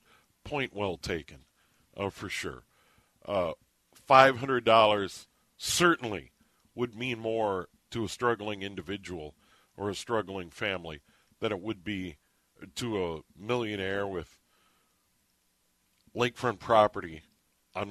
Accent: American